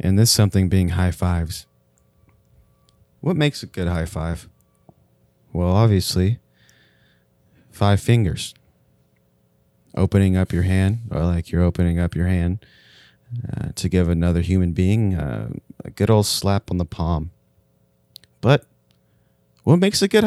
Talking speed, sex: 135 wpm, male